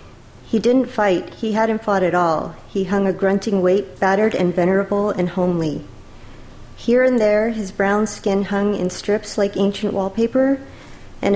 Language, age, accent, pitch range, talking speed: English, 40-59, American, 180-205 Hz, 165 wpm